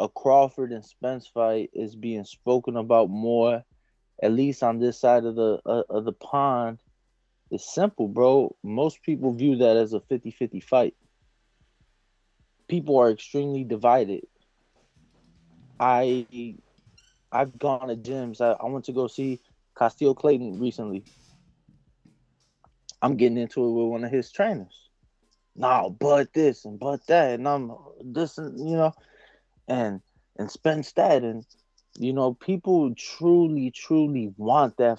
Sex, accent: male, American